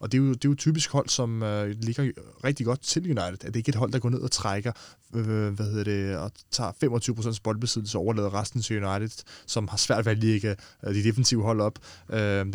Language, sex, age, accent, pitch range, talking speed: Danish, male, 20-39, native, 100-120 Hz, 260 wpm